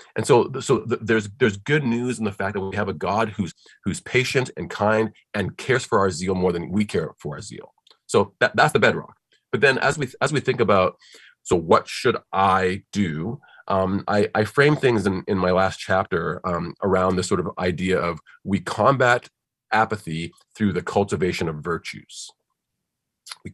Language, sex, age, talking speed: English, male, 30-49, 195 wpm